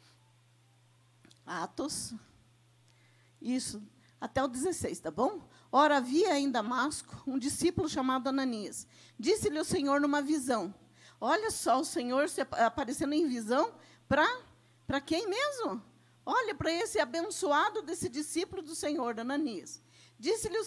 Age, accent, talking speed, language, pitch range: 50-69, Brazilian, 125 wpm, Portuguese, 260-345 Hz